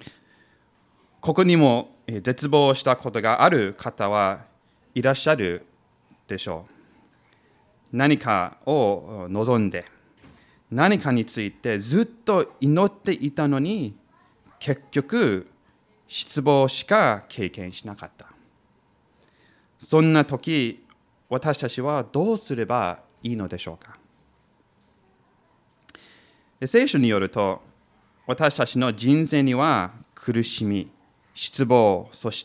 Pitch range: 110-150 Hz